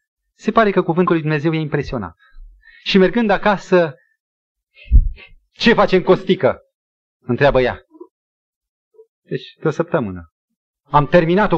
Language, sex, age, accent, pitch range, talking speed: Romanian, male, 30-49, native, 180-275 Hz, 120 wpm